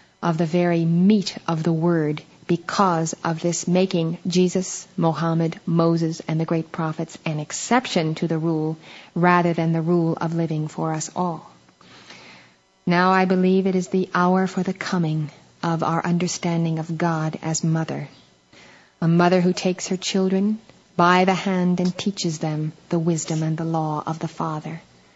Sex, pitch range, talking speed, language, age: female, 165-190 Hz, 165 wpm, English, 40-59